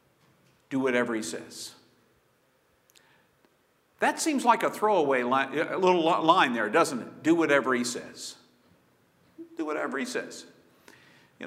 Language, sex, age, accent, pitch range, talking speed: English, male, 50-69, American, 165-255 Hz, 130 wpm